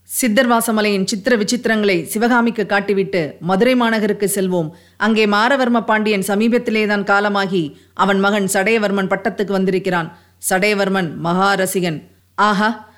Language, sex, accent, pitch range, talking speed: Tamil, female, native, 190-235 Hz, 100 wpm